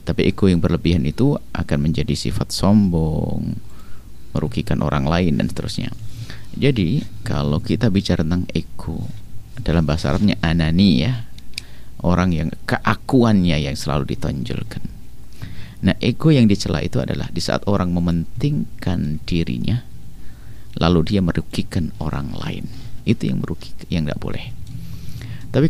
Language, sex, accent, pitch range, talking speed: Indonesian, male, native, 85-115 Hz, 125 wpm